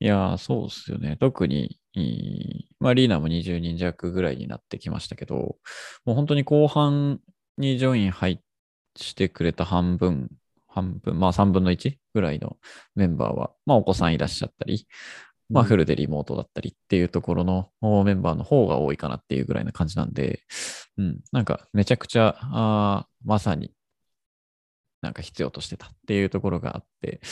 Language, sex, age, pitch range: Japanese, male, 20-39, 90-135 Hz